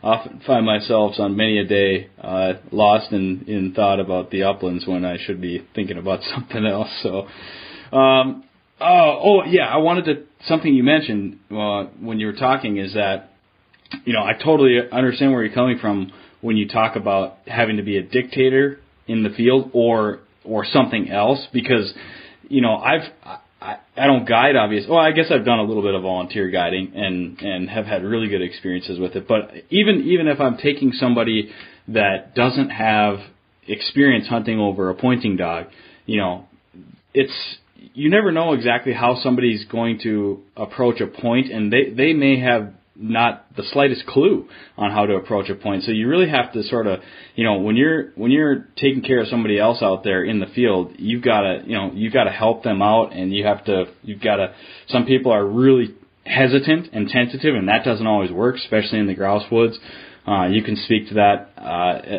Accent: American